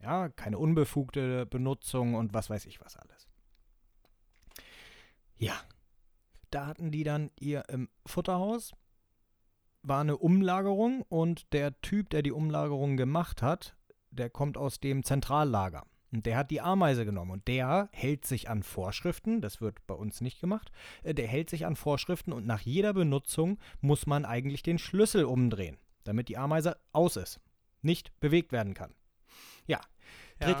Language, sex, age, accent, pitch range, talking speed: German, male, 30-49, German, 105-165 Hz, 150 wpm